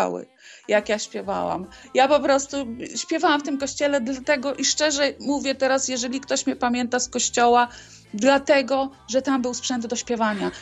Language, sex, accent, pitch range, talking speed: Polish, female, native, 240-295 Hz, 160 wpm